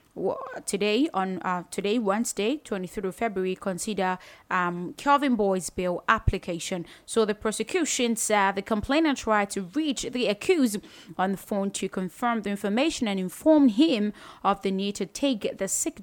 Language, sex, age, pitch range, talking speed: English, female, 20-39, 185-240 Hz, 155 wpm